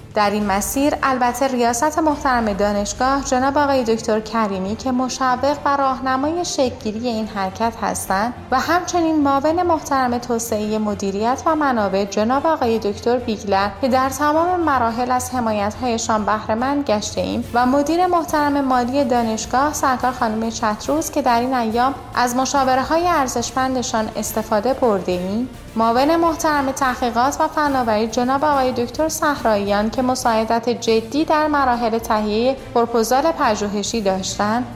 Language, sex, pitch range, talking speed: Persian, female, 225-285 Hz, 135 wpm